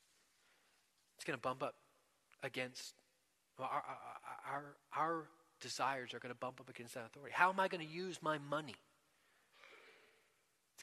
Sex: male